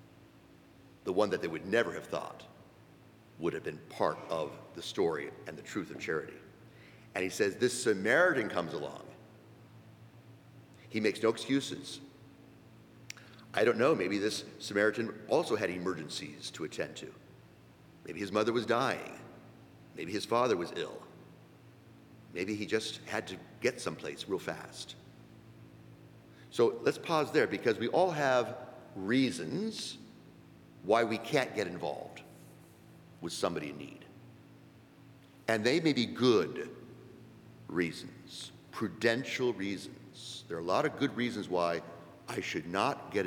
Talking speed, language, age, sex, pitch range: 140 wpm, English, 50-69, male, 110-130 Hz